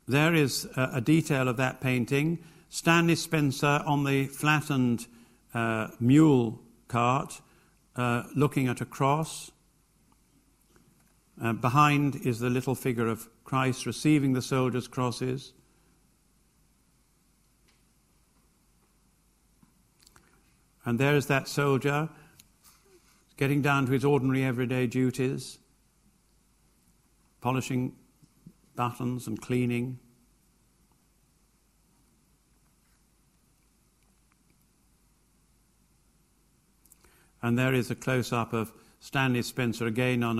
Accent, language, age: British, English, 50-69